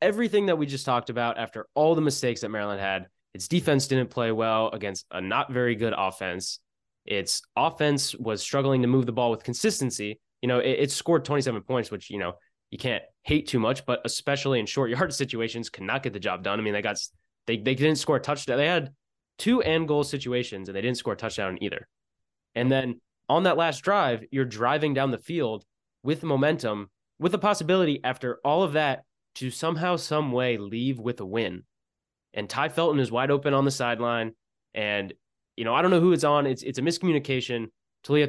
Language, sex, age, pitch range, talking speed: English, male, 20-39, 115-145 Hz, 210 wpm